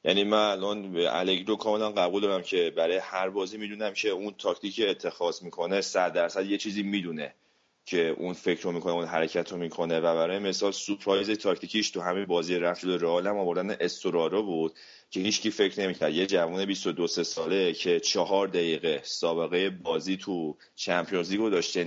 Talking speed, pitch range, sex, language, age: 170 wpm, 85-110 Hz, male, Persian, 30-49